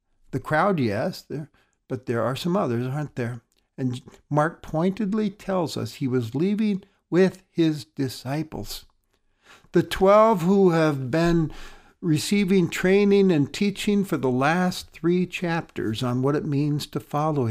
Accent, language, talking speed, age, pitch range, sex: American, English, 145 wpm, 60-79, 125-180 Hz, male